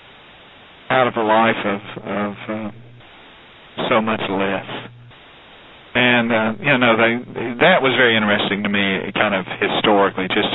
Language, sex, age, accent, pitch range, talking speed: English, male, 40-59, American, 95-120 Hz, 135 wpm